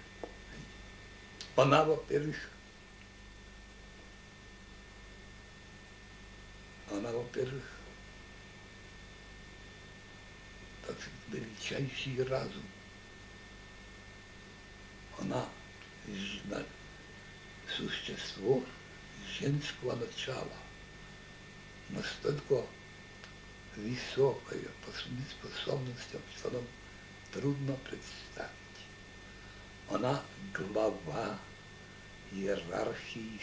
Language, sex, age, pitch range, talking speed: Russian, male, 60-79, 100-105 Hz, 45 wpm